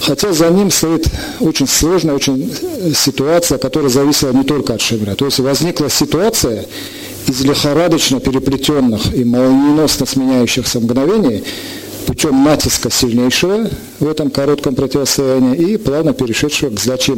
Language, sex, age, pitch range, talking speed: Russian, male, 50-69, 125-155 Hz, 130 wpm